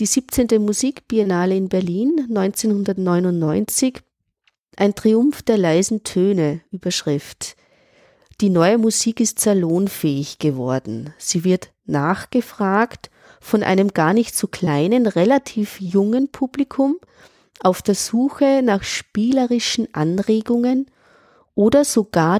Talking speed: 100 wpm